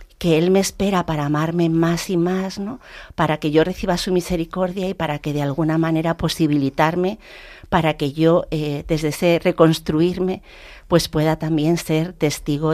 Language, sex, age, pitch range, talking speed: Spanish, female, 50-69, 150-185 Hz, 165 wpm